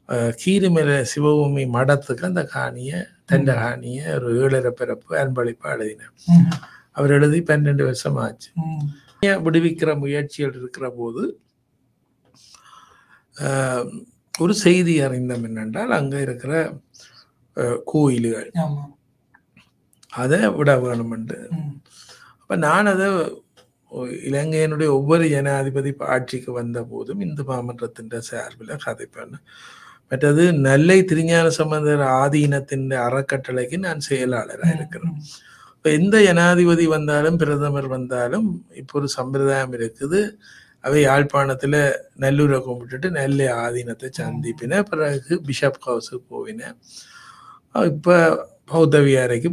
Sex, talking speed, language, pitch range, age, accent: male, 85 wpm, Tamil, 130-165 Hz, 60-79, native